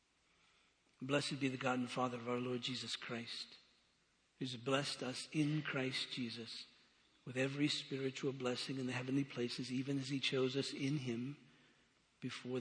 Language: English